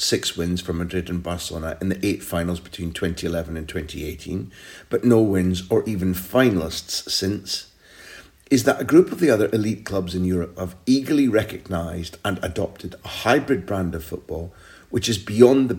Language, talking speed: English, 175 wpm